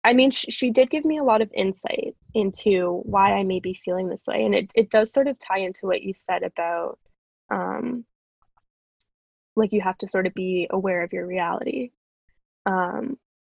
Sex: female